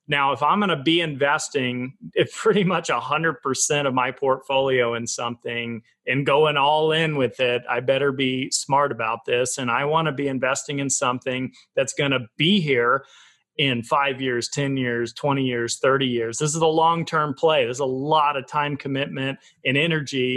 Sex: male